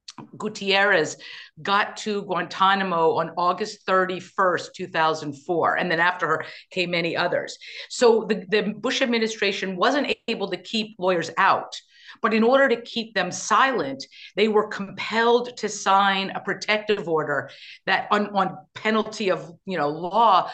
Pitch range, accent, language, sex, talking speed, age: 180-215 Hz, American, English, female, 145 wpm, 50-69